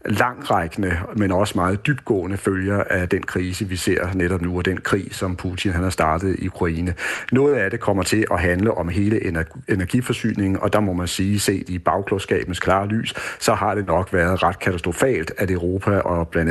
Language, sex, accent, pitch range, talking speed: Danish, male, native, 90-105 Hz, 195 wpm